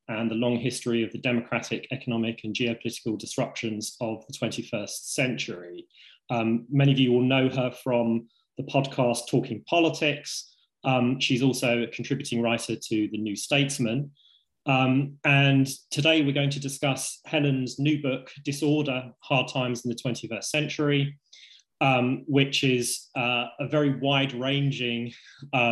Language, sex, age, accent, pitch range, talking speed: English, male, 20-39, British, 120-140 Hz, 140 wpm